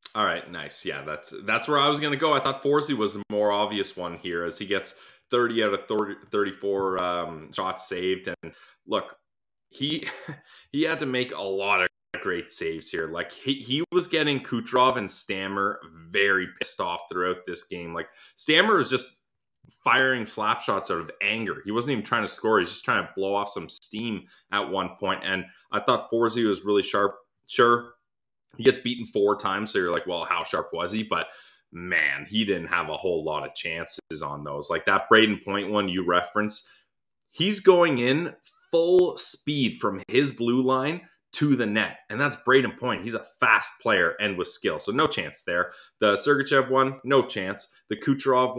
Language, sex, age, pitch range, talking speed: English, male, 20-39, 100-135 Hz, 200 wpm